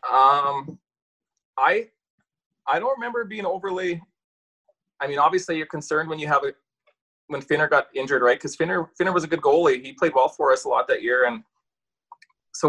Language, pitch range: English, 150-205 Hz